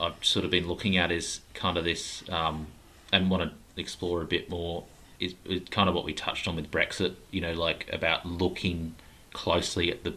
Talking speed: 210 wpm